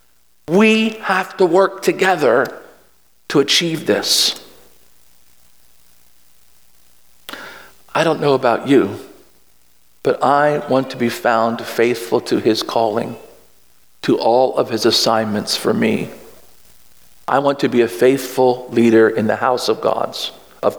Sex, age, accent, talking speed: male, 50-69, American, 120 wpm